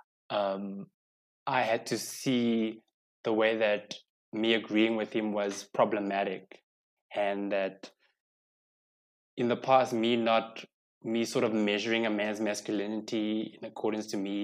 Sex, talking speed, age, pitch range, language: male, 135 wpm, 20-39, 105-125 Hz, English